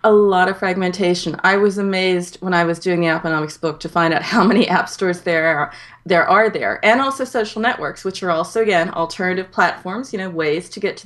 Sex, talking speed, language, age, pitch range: female, 230 wpm, English, 30-49, 180-225 Hz